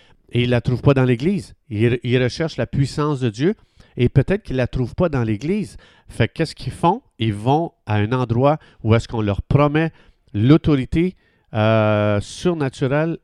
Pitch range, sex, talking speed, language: 110-145 Hz, male, 180 wpm, French